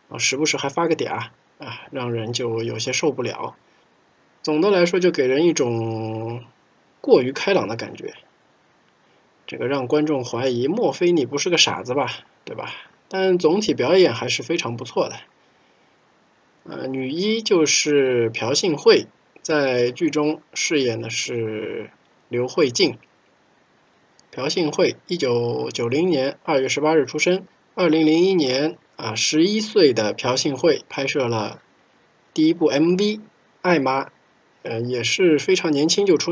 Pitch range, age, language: 120-170 Hz, 20-39, Chinese